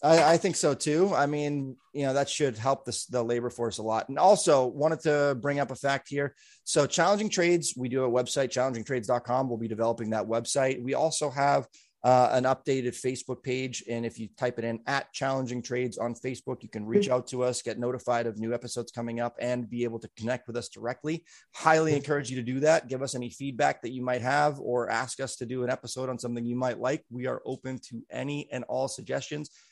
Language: English